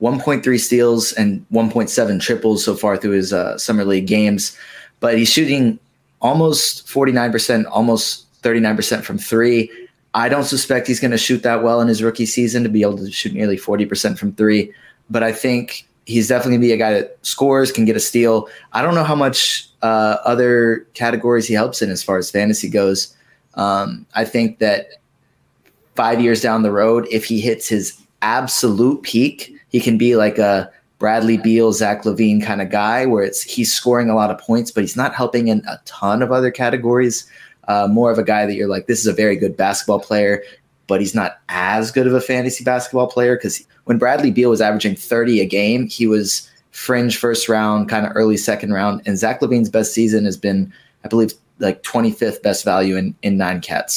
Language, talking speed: English, 200 wpm